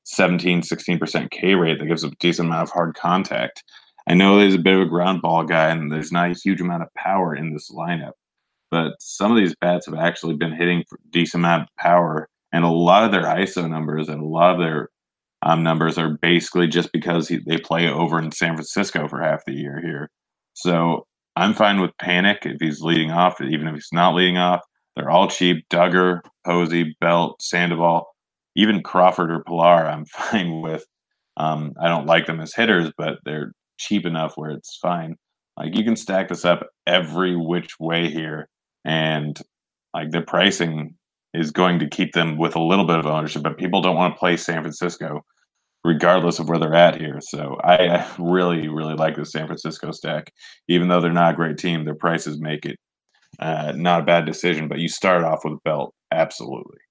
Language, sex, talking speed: English, male, 200 wpm